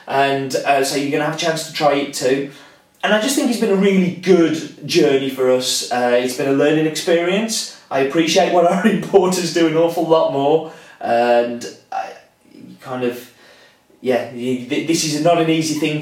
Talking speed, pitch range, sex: 210 wpm, 130-175 Hz, male